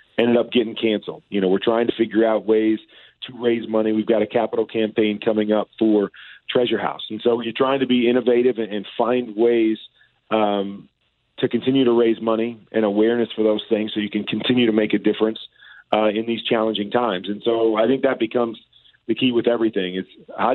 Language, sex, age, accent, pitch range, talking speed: English, male, 40-59, American, 110-120 Hz, 205 wpm